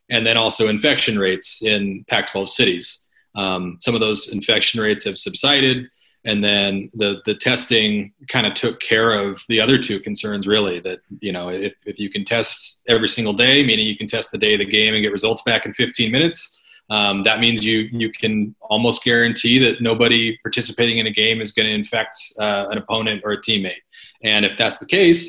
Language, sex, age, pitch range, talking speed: English, male, 30-49, 100-115 Hz, 205 wpm